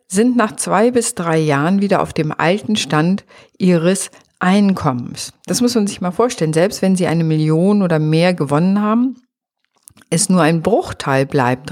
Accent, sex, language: German, female, German